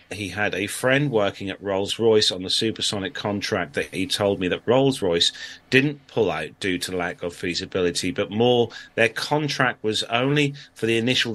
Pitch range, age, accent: 100-140 Hz, 30-49, British